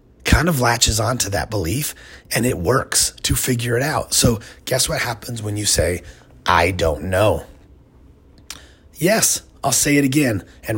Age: 30-49